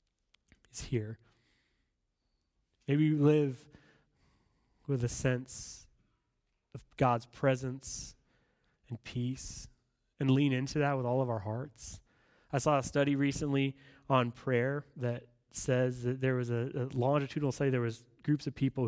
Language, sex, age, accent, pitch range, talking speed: English, male, 20-39, American, 120-145 Hz, 135 wpm